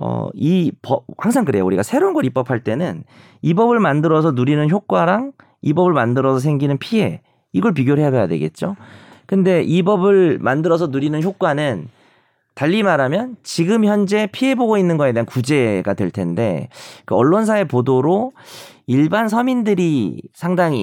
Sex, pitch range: male, 115-180 Hz